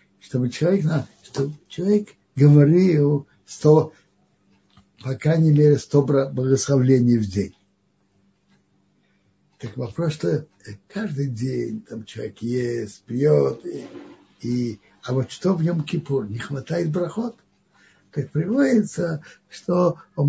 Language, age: Russian, 60-79